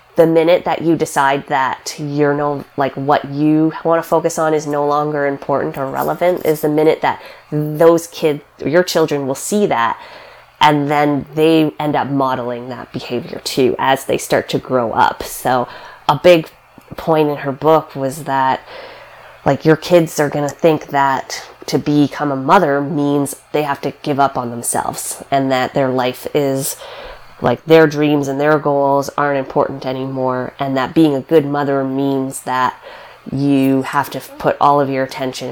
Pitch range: 135-160 Hz